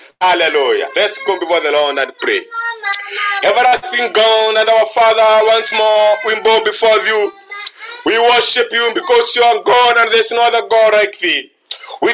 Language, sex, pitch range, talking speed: English, male, 235-310 Hz, 170 wpm